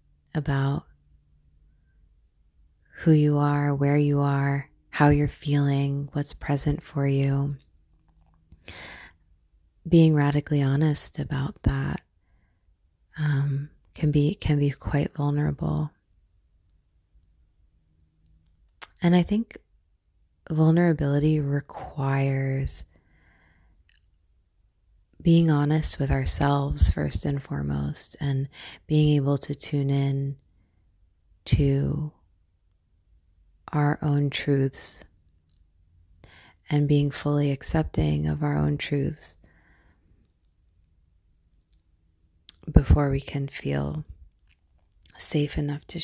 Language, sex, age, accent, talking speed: English, female, 20-39, American, 80 wpm